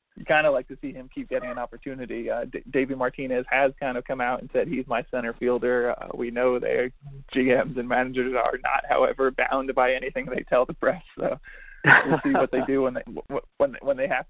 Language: English